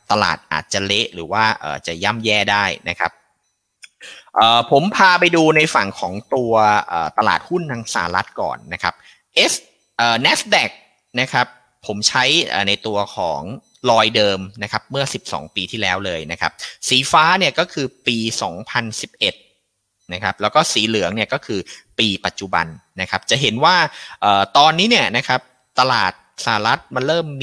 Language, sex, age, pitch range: Thai, male, 30-49, 100-130 Hz